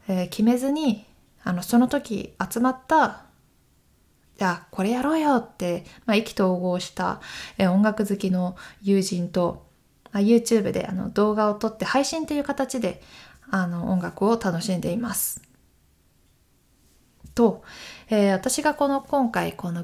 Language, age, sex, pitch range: Japanese, 20-39, female, 185-240 Hz